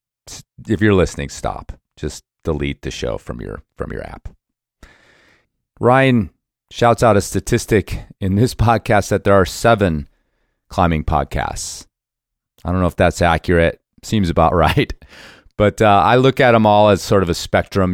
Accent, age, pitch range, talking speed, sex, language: American, 30-49, 85-100 Hz, 160 wpm, male, English